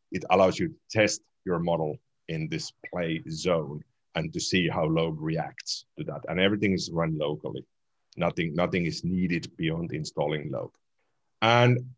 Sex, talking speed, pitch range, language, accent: male, 160 wpm, 85-125 Hz, English, Finnish